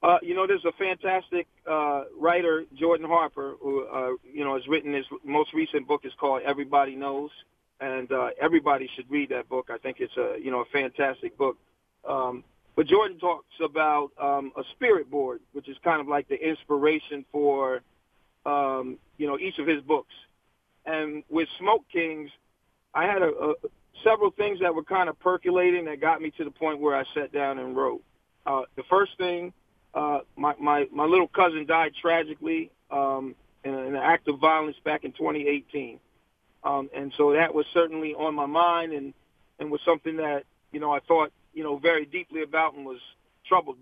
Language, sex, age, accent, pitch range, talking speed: English, male, 40-59, American, 145-170 Hz, 190 wpm